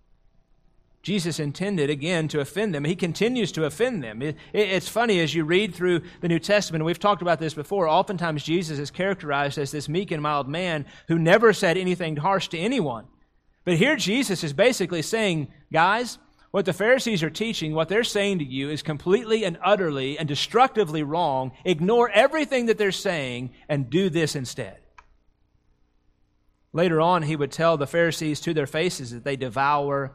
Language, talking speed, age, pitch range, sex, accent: English, 180 wpm, 30-49, 130-180 Hz, male, American